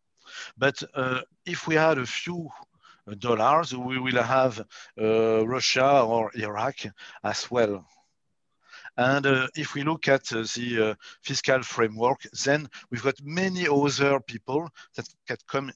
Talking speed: 140 wpm